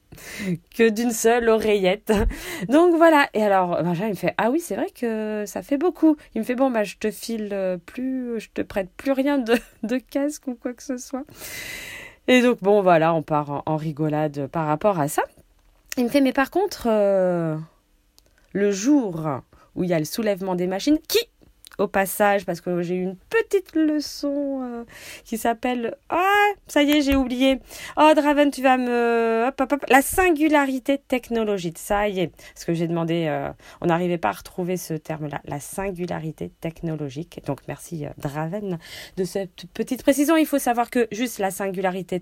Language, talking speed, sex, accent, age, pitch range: French, 195 wpm, female, French, 20-39, 170-260 Hz